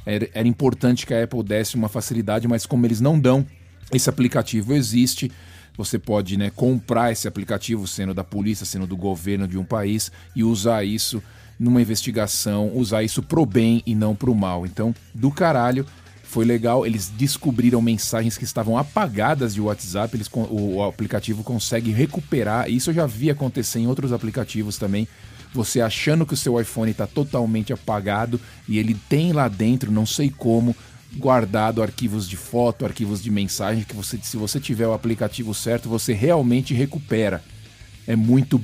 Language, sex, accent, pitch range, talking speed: Portuguese, male, Brazilian, 105-125 Hz, 170 wpm